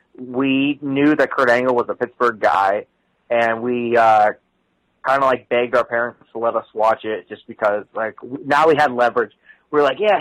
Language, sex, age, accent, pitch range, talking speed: English, male, 30-49, American, 120-145 Hz, 190 wpm